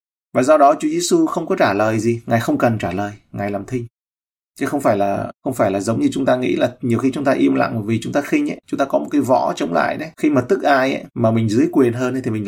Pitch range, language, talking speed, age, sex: 110-140 Hz, Vietnamese, 310 wpm, 20-39, male